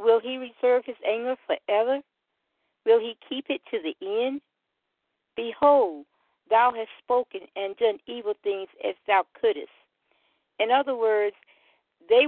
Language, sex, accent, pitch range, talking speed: English, female, American, 220-300 Hz, 135 wpm